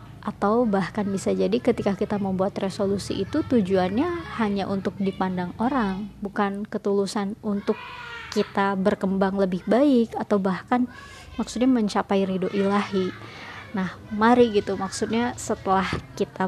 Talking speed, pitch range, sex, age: 120 wpm, 195-225 Hz, male, 20-39